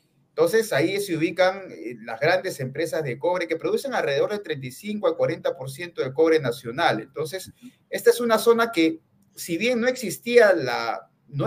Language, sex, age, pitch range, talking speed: Spanish, male, 40-59, 135-200 Hz, 160 wpm